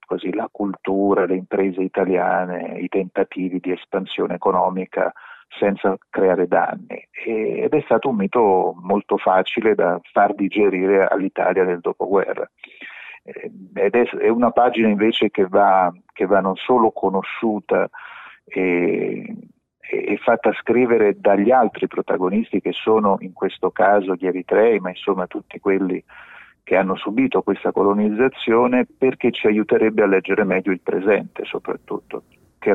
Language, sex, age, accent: Italian, male, 40-59, native